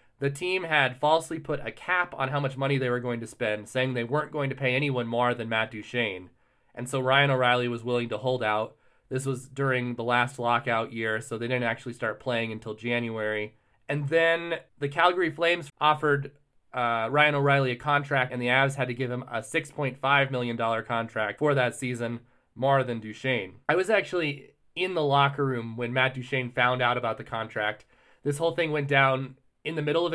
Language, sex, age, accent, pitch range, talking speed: English, male, 30-49, American, 120-145 Hz, 205 wpm